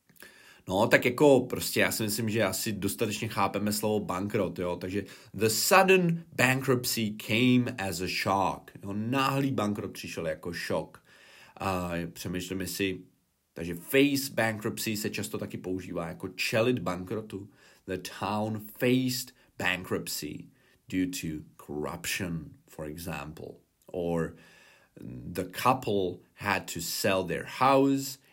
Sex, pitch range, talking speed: male, 95-125 Hz, 125 wpm